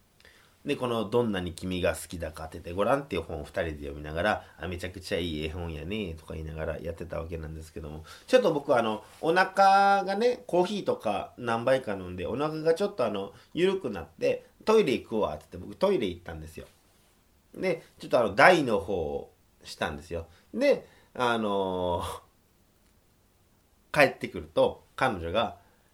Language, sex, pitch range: Japanese, male, 85-140 Hz